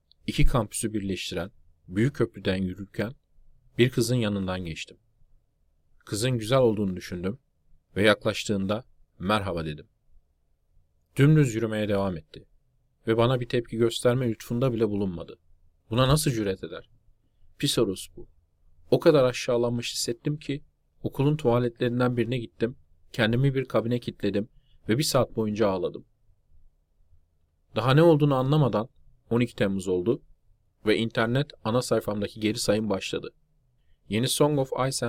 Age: 40-59